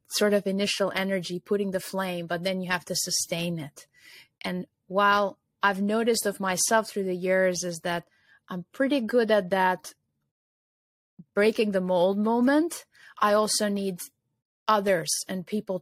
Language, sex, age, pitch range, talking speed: English, female, 20-39, 170-200 Hz, 150 wpm